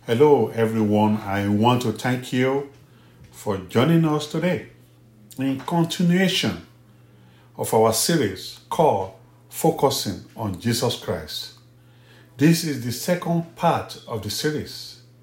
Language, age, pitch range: English, 50-69, 115-150 Hz